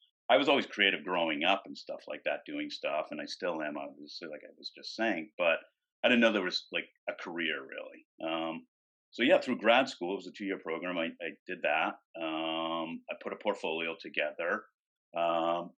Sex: male